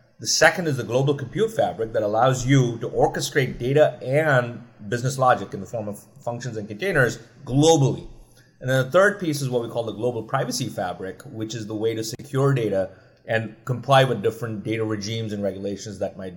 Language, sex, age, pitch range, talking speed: English, male, 30-49, 110-145 Hz, 200 wpm